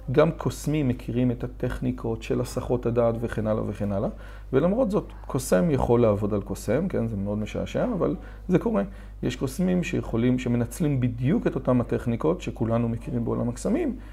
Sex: male